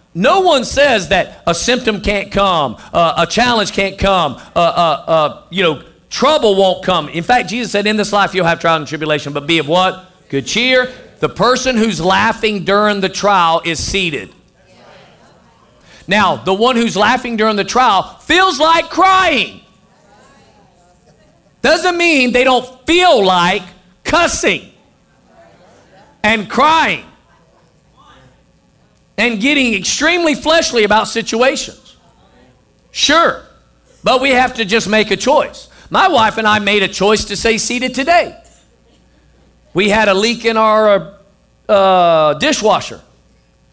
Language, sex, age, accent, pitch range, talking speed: English, male, 50-69, American, 185-240 Hz, 140 wpm